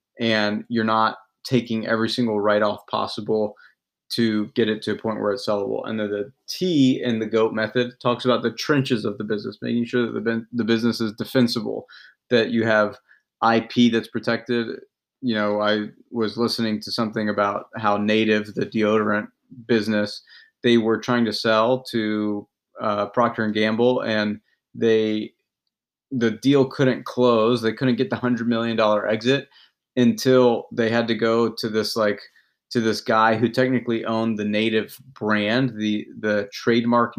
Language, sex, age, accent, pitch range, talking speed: English, male, 30-49, American, 105-120 Hz, 170 wpm